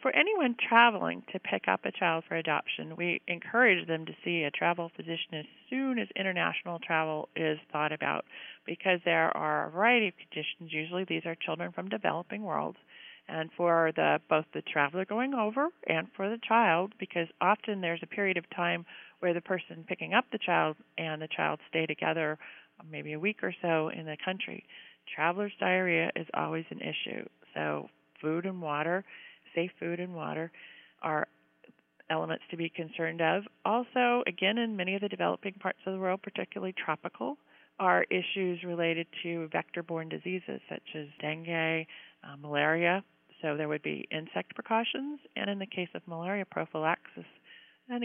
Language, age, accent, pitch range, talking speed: English, 40-59, American, 160-200 Hz, 170 wpm